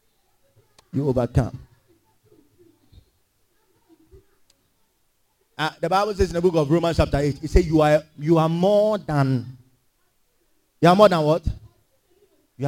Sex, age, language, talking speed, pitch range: male, 30-49, English, 130 wpm, 140-230 Hz